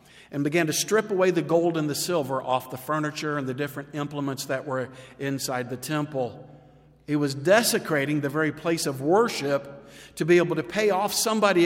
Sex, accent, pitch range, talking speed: male, American, 135-165 Hz, 190 wpm